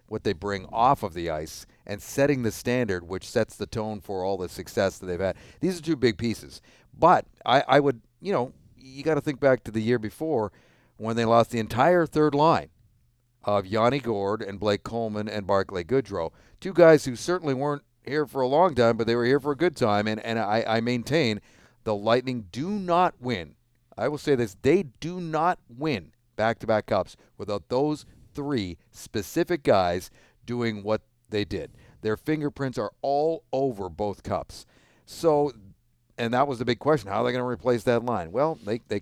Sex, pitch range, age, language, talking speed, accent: male, 105-130 Hz, 50-69, English, 200 wpm, American